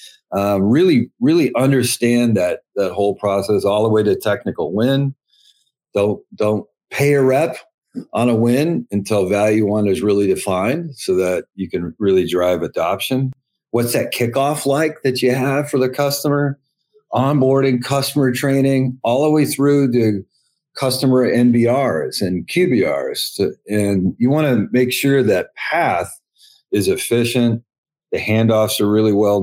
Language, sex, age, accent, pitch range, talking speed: English, male, 40-59, American, 100-140 Hz, 150 wpm